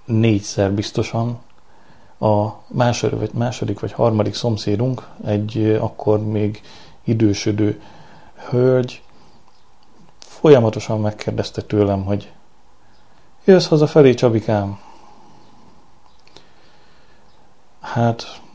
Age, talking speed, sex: 30-49, 70 wpm, male